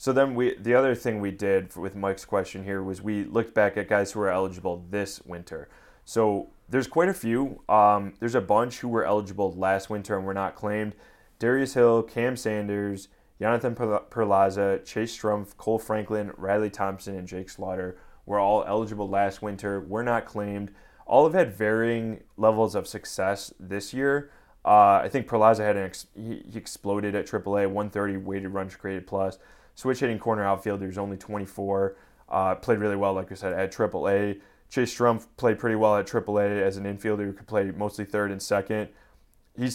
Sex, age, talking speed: male, 20-39, 190 wpm